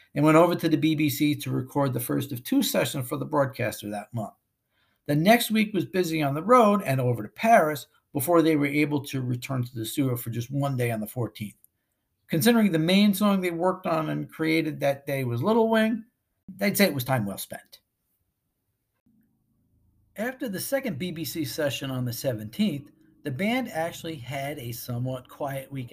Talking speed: 190 wpm